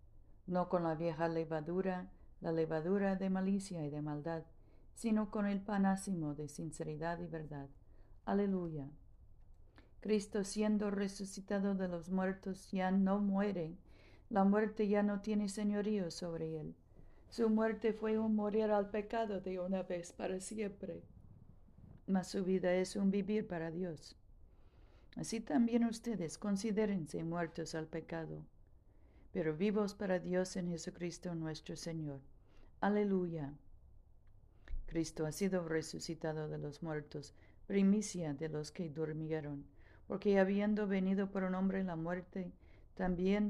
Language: Spanish